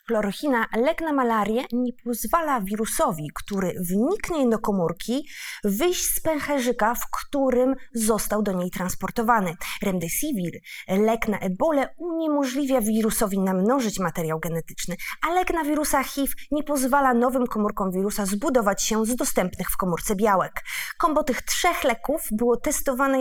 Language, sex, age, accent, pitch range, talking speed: Polish, female, 20-39, native, 210-275 Hz, 135 wpm